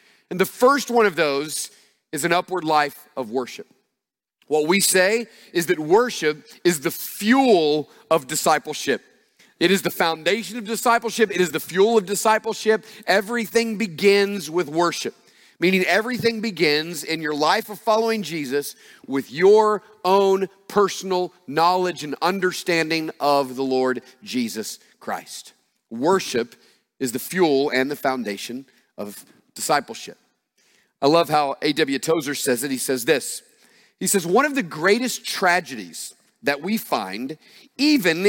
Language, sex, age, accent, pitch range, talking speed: English, male, 40-59, American, 150-205 Hz, 145 wpm